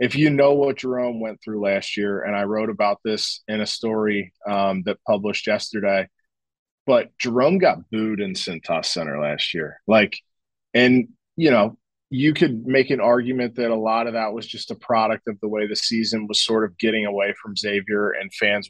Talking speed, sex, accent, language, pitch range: 200 wpm, male, American, English, 105-125 Hz